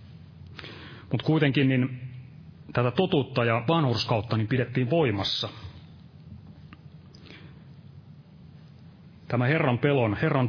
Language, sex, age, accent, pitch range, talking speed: Finnish, male, 30-49, native, 115-150 Hz, 80 wpm